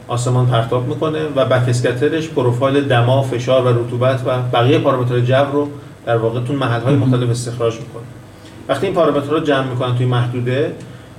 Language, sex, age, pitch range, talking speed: Persian, male, 40-59, 120-145 Hz, 165 wpm